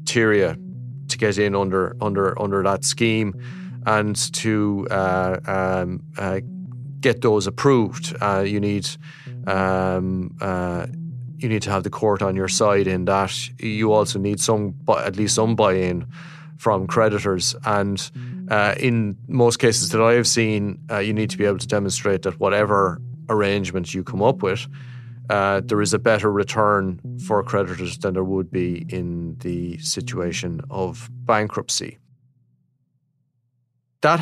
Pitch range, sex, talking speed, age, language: 95-120 Hz, male, 150 wpm, 30-49, English